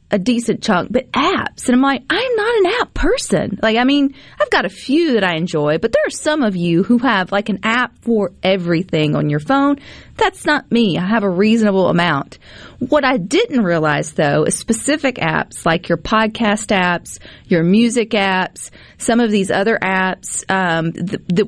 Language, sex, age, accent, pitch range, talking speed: English, female, 40-59, American, 180-255 Hz, 195 wpm